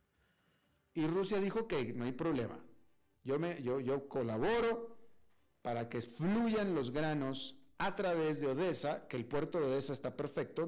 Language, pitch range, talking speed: Spanish, 130-185 Hz, 165 wpm